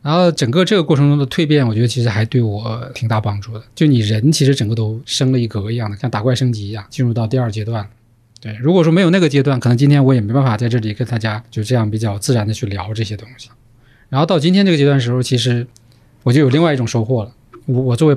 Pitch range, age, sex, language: 115-140 Hz, 20-39, male, Chinese